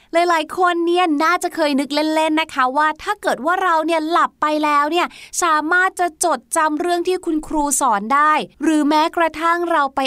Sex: female